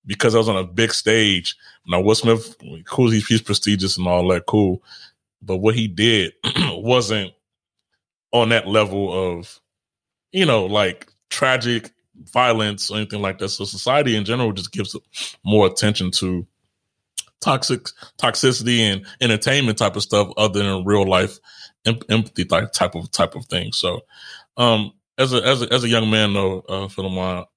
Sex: male